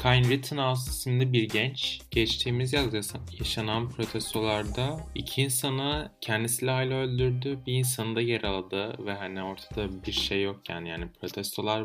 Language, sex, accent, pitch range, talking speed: Turkish, male, native, 100-125 Hz, 140 wpm